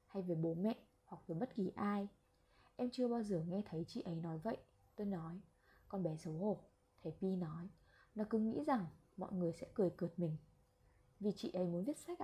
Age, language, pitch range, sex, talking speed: 20-39, Vietnamese, 170-225 Hz, female, 215 wpm